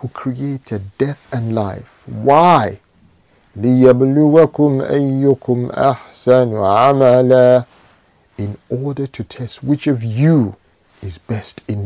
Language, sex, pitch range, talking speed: English, male, 105-140 Hz, 80 wpm